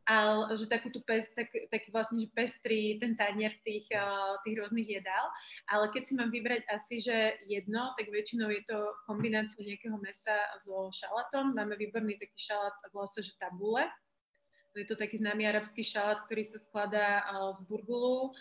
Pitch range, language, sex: 205-225 Hz, Slovak, female